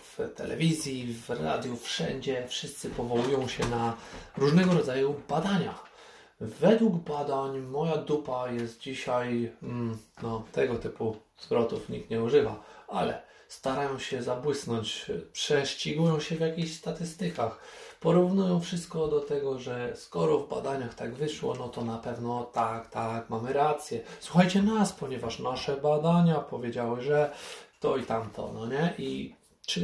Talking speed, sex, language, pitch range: 135 wpm, male, Polish, 120-155 Hz